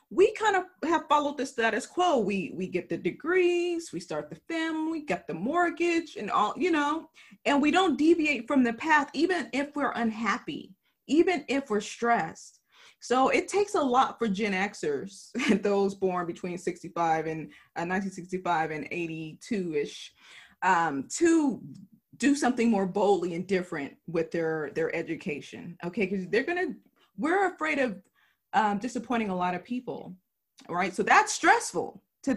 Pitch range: 185-275 Hz